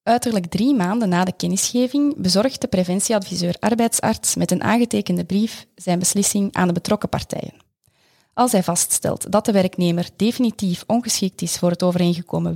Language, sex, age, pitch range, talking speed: Dutch, female, 20-39, 180-225 Hz, 150 wpm